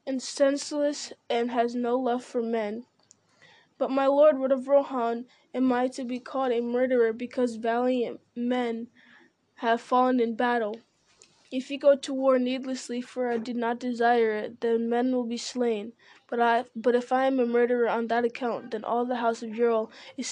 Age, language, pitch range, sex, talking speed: 20-39, English, 235-260 Hz, female, 185 wpm